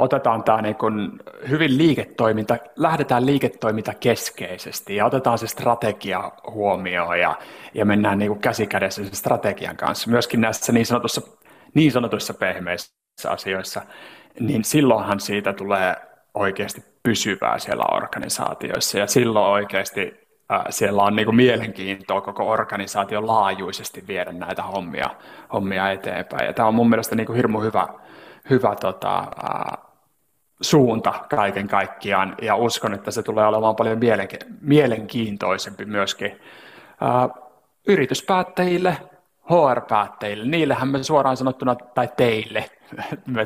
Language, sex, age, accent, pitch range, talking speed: Finnish, male, 30-49, native, 105-130 Hz, 115 wpm